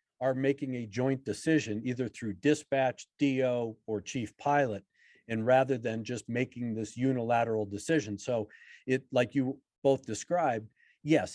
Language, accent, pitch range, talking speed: English, American, 115-135 Hz, 145 wpm